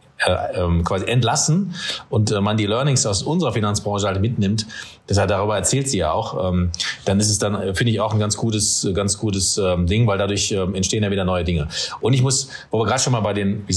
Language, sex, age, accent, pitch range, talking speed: German, male, 40-59, German, 100-125 Hz, 230 wpm